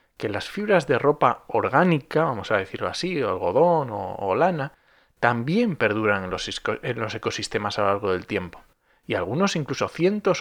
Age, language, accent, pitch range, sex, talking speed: 30-49, Spanish, Spanish, 115-170 Hz, male, 165 wpm